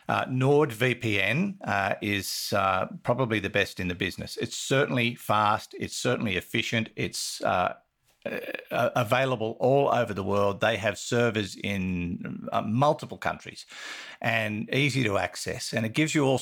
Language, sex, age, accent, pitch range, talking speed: English, male, 50-69, Australian, 100-130 Hz, 145 wpm